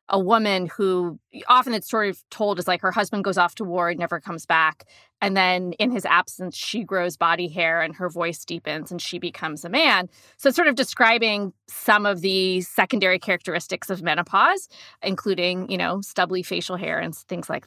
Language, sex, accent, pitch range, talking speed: English, female, American, 180-230 Hz, 195 wpm